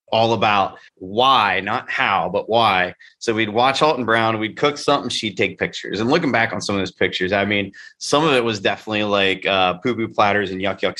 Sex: male